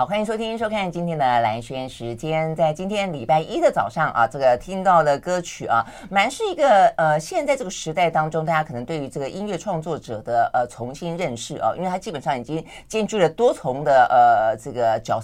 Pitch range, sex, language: 140-200 Hz, female, Chinese